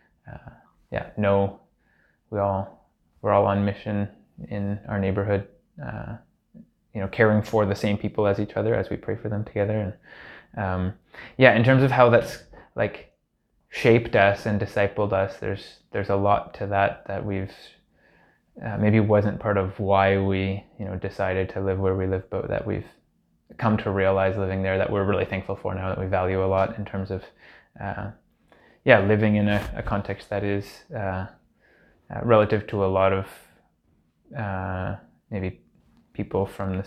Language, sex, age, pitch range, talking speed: English, male, 20-39, 95-105 Hz, 175 wpm